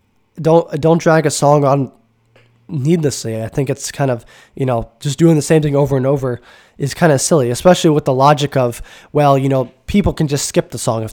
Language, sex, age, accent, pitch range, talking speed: English, male, 10-29, American, 120-155 Hz, 220 wpm